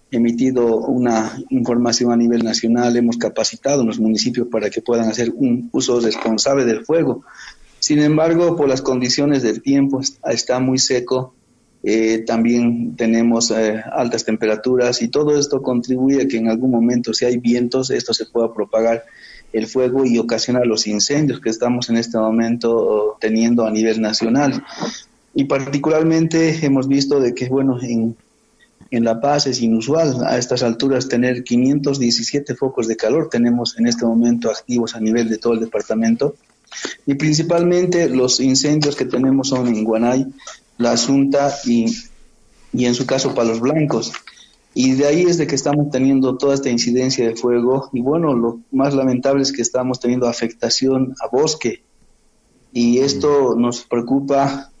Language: Spanish